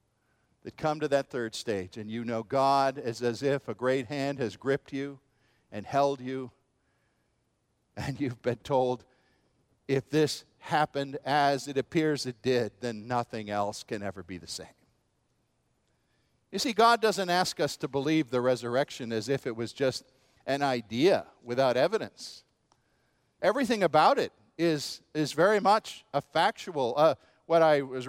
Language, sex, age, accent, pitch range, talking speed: English, male, 50-69, American, 135-185 Hz, 160 wpm